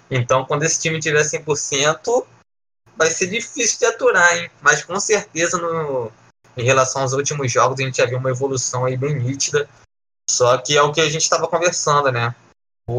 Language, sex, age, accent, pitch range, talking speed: Portuguese, male, 20-39, Brazilian, 125-155 Hz, 190 wpm